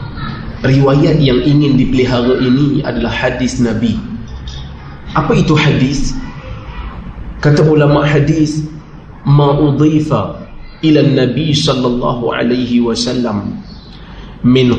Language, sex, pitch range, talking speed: Malay, male, 125-150 Hz, 85 wpm